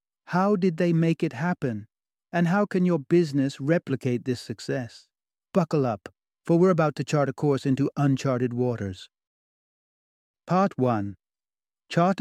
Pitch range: 125-160 Hz